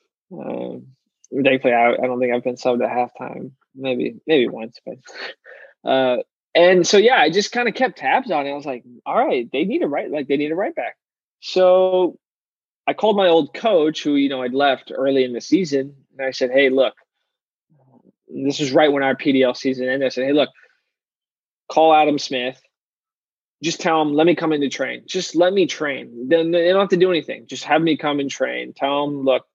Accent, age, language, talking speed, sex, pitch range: American, 20-39, English, 210 wpm, male, 130-185 Hz